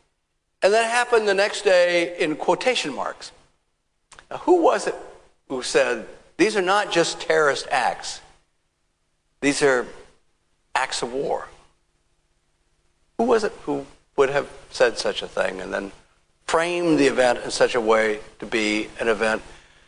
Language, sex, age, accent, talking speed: English, male, 60-79, American, 145 wpm